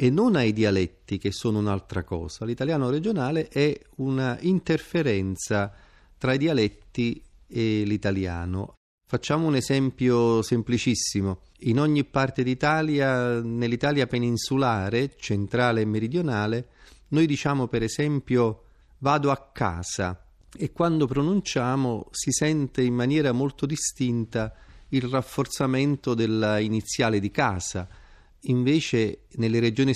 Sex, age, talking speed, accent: male, 30-49, 110 wpm, native